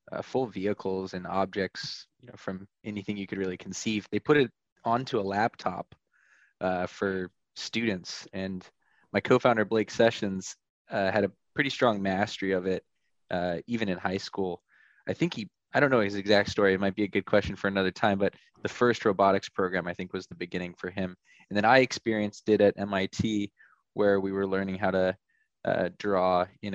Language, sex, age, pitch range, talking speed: English, male, 20-39, 95-105 Hz, 195 wpm